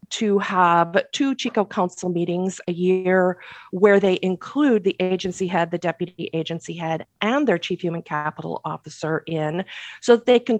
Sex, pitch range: female, 165-210 Hz